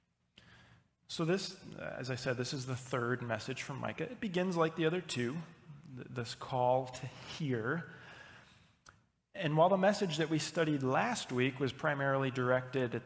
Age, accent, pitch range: 30-49, American, 125-150 Hz